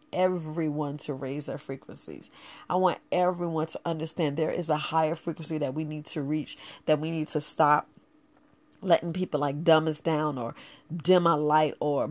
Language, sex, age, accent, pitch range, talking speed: English, female, 40-59, American, 155-180 Hz, 180 wpm